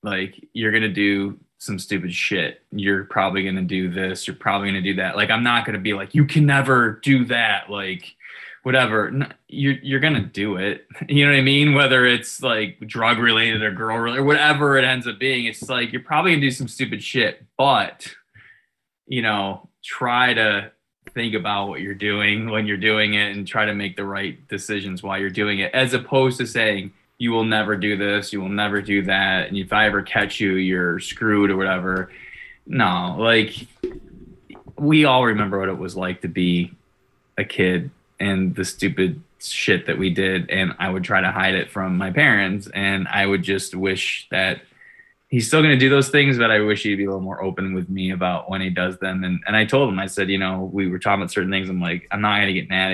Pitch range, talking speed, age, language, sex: 95-120 Hz, 225 wpm, 20-39, English, male